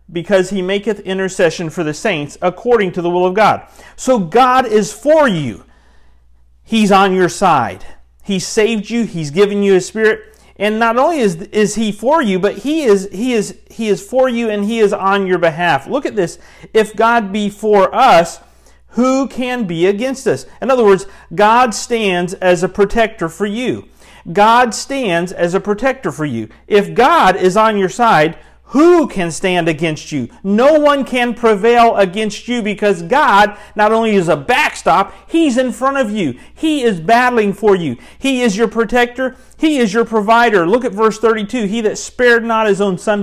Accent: American